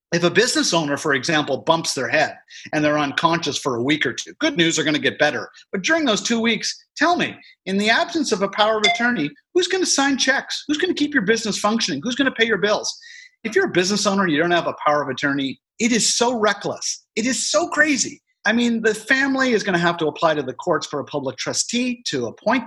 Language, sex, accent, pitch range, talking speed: English, male, American, 150-245 Hz, 255 wpm